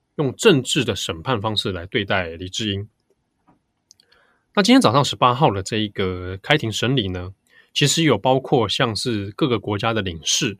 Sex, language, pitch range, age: male, Chinese, 100-140 Hz, 20-39